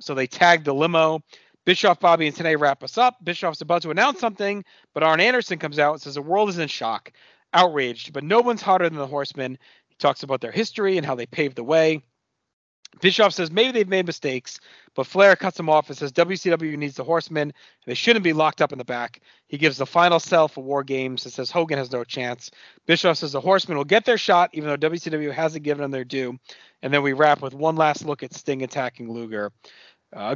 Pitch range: 130-170 Hz